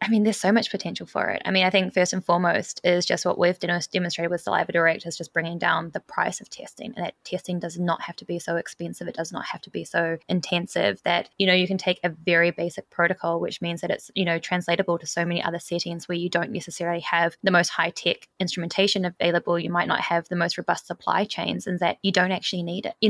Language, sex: English, female